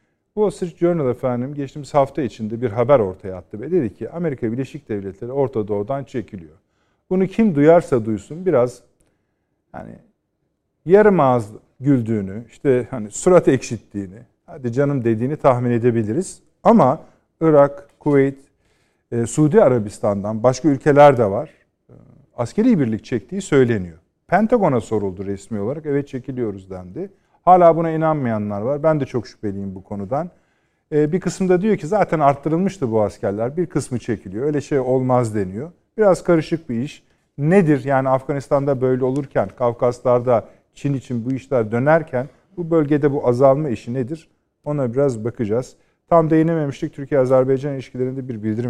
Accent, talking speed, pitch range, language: native, 140 wpm, 115-155 Hz, Turkish